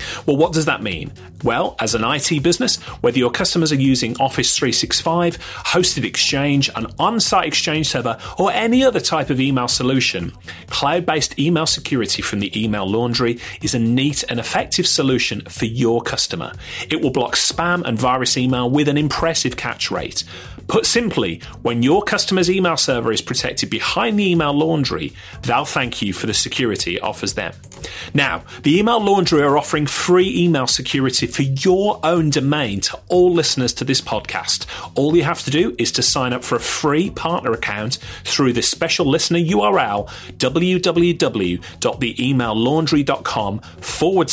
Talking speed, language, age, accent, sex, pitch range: 160 wpm, English, 30-49, British, male, 120-170 Hz